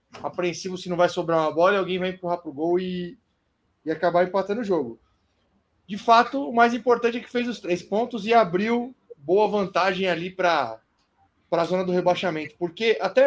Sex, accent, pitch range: male, Brazilian, 155-210 Hz